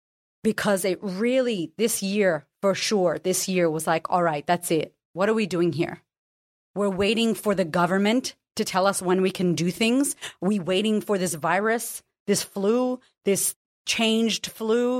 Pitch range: 180-220 Hz